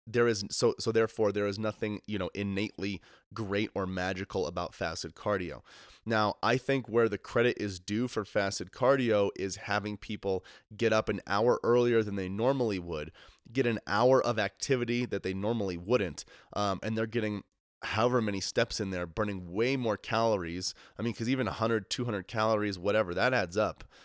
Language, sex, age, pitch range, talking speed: English, male, 30-49, 95-110 Hz, 180 wpm